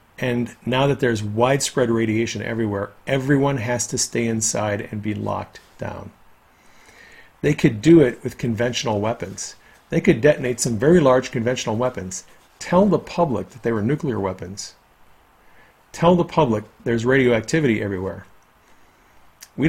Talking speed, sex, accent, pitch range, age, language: 140 wpm, male, American, 110-135 Hz, 40-59, English